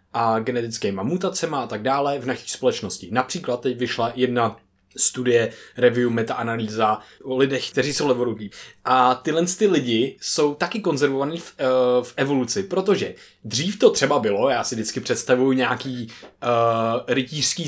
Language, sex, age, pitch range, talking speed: Czech, male, 20-39, 125-175 Hz, 150 wpm